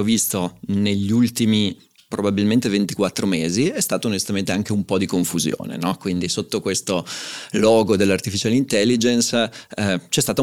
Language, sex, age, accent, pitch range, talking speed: Italian, male, 30-49, native, 95-110 Hz, 130 wpm